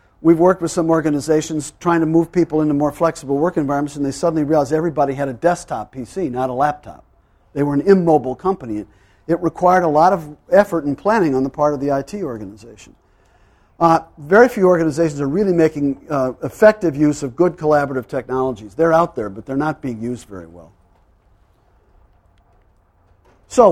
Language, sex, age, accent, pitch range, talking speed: English, male, 50-69, American, 135-180 Hz, 180 wpm